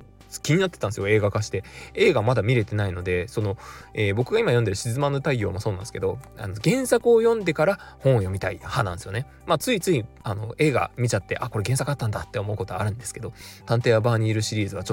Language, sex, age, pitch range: Japanese, male, 20-39, 100-150 Hz